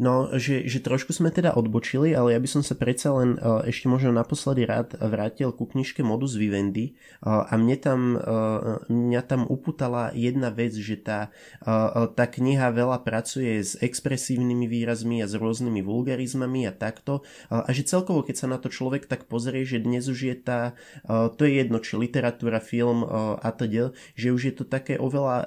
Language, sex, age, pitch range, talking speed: Slovak, male, 20-39, 115-130 Hz, 195 wpm